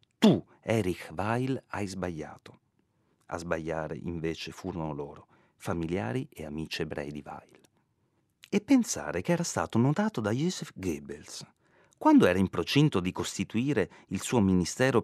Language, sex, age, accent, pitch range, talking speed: Italian, male, 40-59, native, 85-135 Hz, 135 wpm